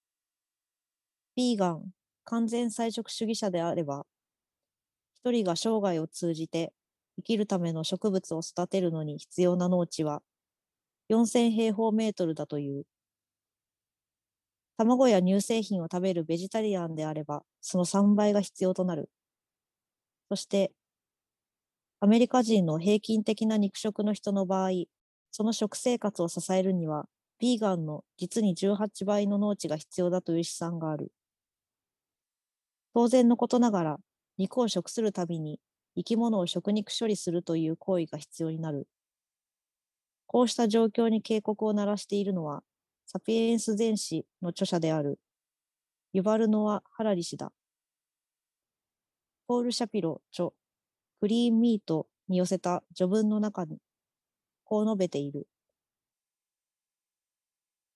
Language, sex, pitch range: Japanese, female, 170-220 Hz